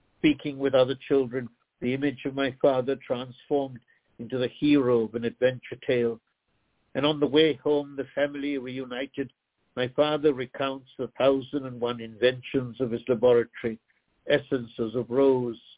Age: 60-79